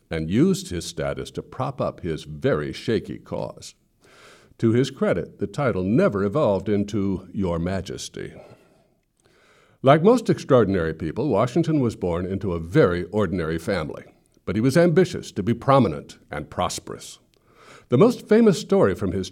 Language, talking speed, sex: English, 150 wpm, male